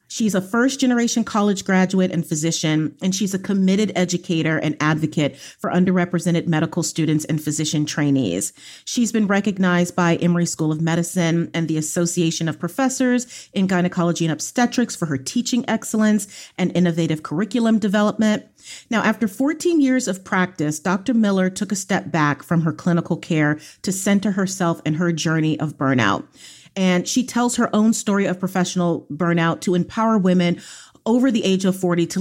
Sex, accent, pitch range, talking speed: female, American, 170-225 Hz, 165 wpm